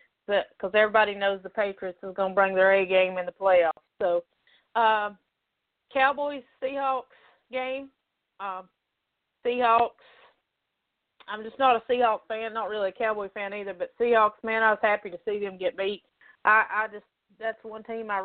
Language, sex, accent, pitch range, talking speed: English, female, American, 195-230 Hz, 170 wpm